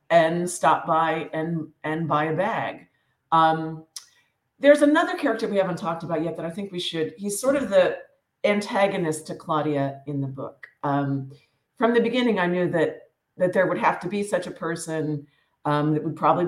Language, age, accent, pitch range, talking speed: English, 50-69, American, 155-185 Hz, 190 wpm